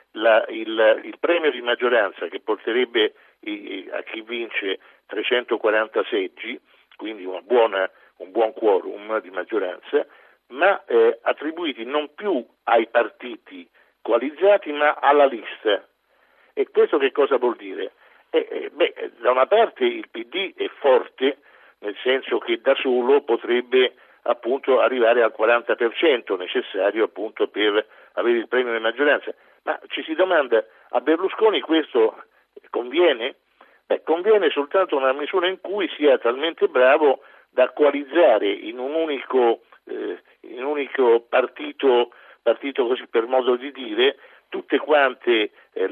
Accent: native